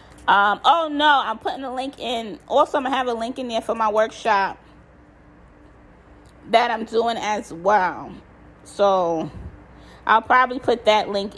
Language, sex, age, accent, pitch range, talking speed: English, female, 20-39, American, 200-245 Hz, 165 wpm